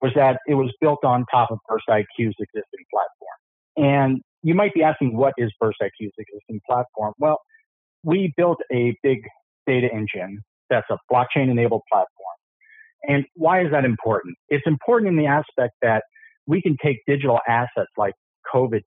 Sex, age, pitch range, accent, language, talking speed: male, 50-69, 115-150 Hz, American, English, 170 wpm